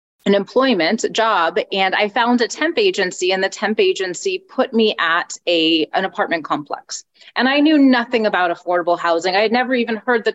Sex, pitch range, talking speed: female, 180-240 Hz, 190 wpm